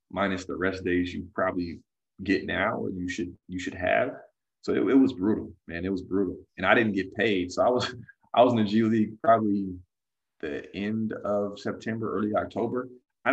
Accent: American